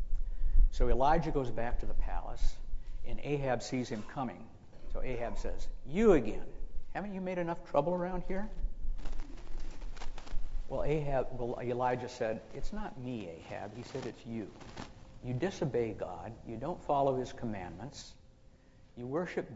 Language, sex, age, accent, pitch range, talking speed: English, male, 60-79, American, 110-150 Hz, 145 wpm